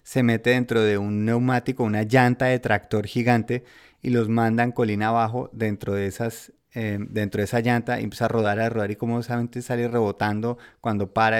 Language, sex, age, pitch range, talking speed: Spanish, male, 30-49, 105-125 Hz, 195 wpm